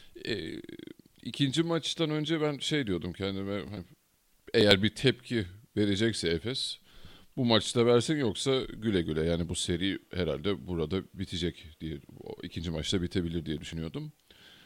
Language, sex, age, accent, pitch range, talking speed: Turkish, male, 40-59, native, 85-110 Hz, 125 wpm